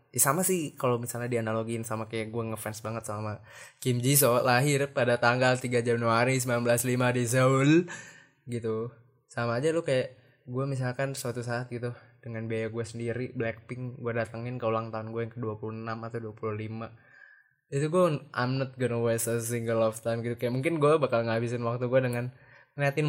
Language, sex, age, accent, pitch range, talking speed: Indonesian, male, 10-29, native, 115-130 Hz, 170 wpm